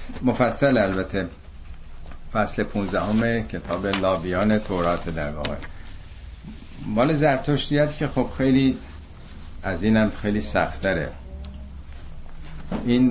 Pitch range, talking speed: 80-110 Hz, 90 wpm